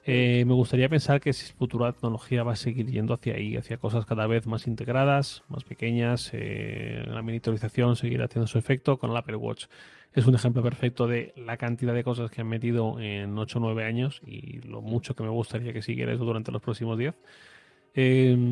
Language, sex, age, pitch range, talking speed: Spanish, male, 30-49, 115-130 Hz, 205 wpm